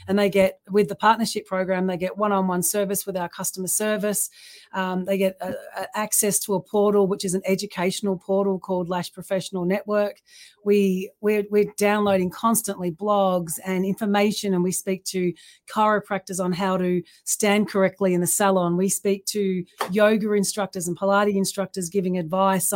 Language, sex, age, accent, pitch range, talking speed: English, female, 30-49, Australian, 185-210 Hz, 170 wpm